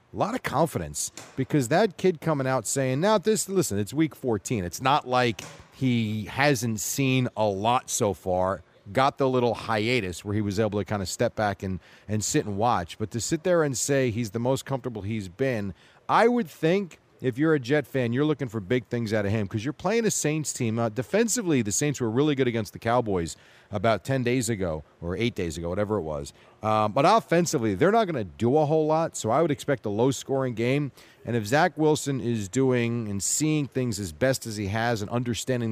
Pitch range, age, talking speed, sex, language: 105-145 Hz, 40-59, 225 wpm, male, English